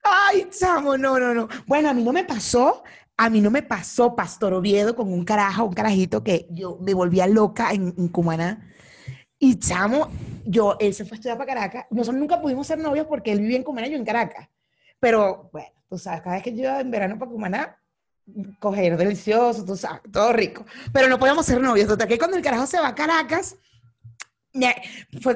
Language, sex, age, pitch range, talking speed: Spanish, female, 30-49, 210-295 Hz, 210 wpm